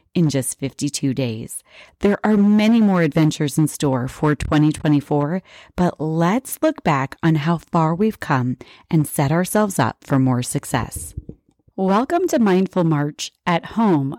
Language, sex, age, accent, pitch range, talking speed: English, female, 30-49, American, 160-245 Hz, 150 wpm